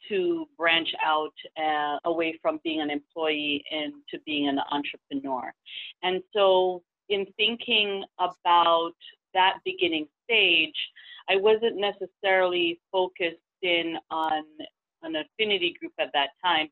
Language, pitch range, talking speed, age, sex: English, 155-200 Hz, 120 wpm, 40-59, female